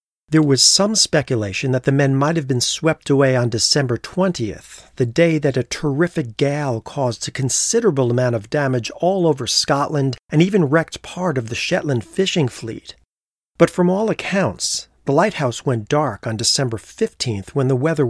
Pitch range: 120-160 Hz